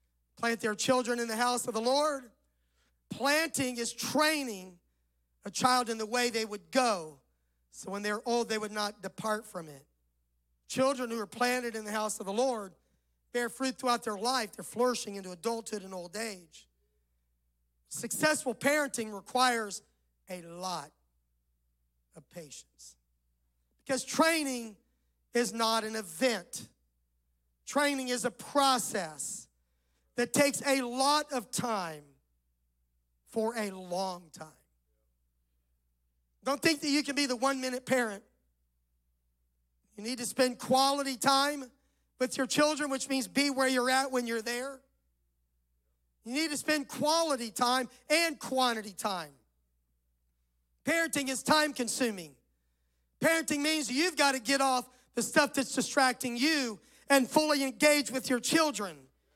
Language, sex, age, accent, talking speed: English, male, 40-59, American, 135 wpm